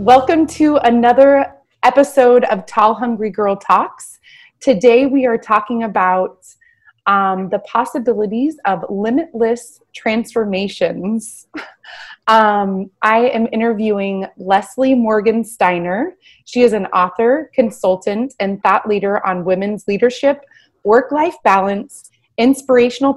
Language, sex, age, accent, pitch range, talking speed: English, female, 20-39, American, 190-245 Hz, 105 wpm